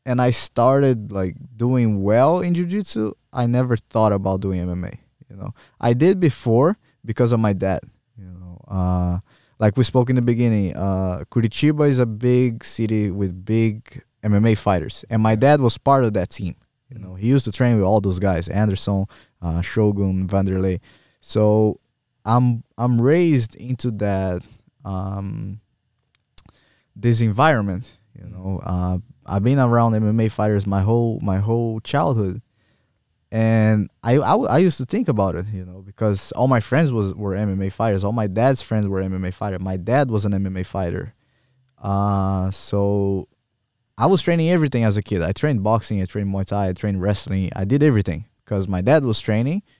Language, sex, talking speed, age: Swedish, male, 175 wpm, 20-39